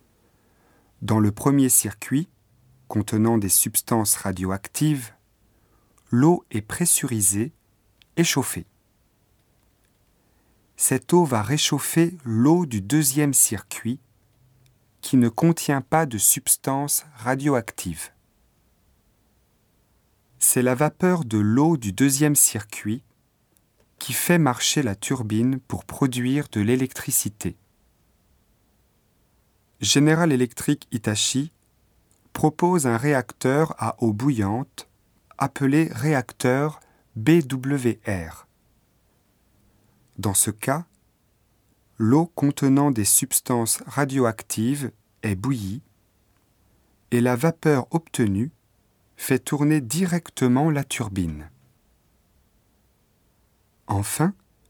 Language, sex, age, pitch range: Japanese, male, 40-59, 105-145 Hz